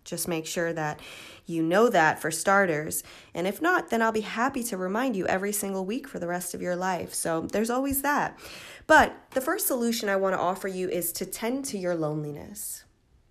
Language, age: English, 20-39